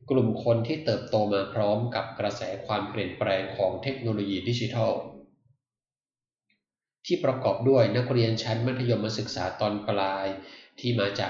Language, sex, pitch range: Thai, male, 105-130 Hz